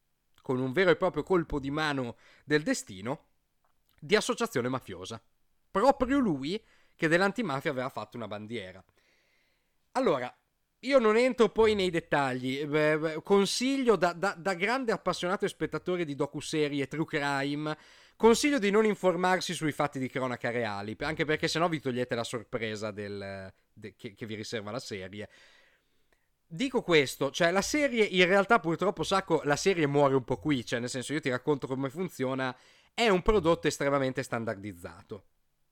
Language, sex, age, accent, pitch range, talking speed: Italian, male, 40-59, native, 125-180 Hz, 155 wpm